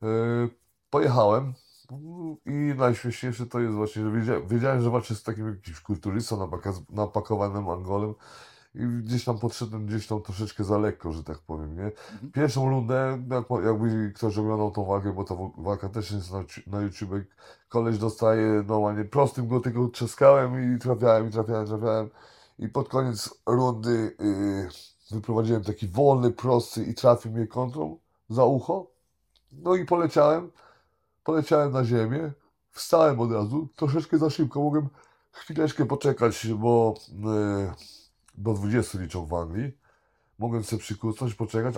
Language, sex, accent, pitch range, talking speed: Polish, male, native, 105-130 Hz, 145 wpm